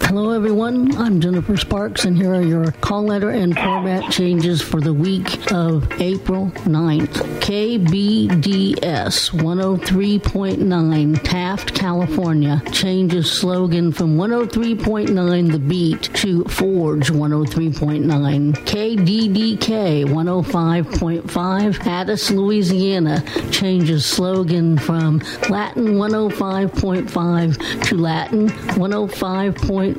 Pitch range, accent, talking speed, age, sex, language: 165-205 Hz, American, 90 wpm, 60-79, female, English